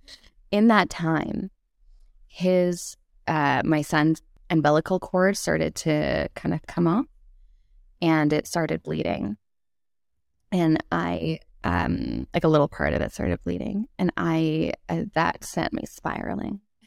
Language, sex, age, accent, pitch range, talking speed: English, female, 20-39, American, 160-215 Hz, 130 wpm